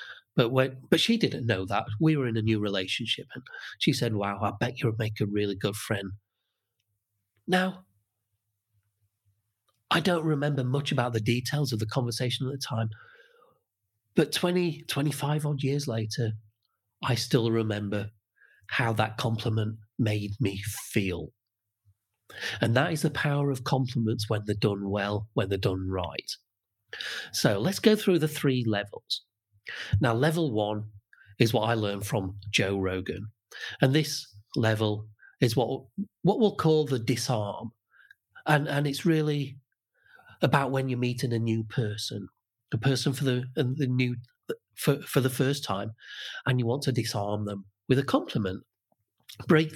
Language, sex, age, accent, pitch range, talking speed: English, male, 40-59, British, 105-140 Hz, 155 wpm